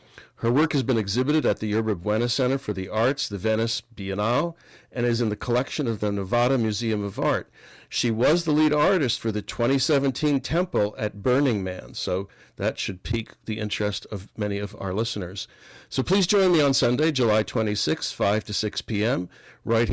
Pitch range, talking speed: 105-130 Hz, 190 wpm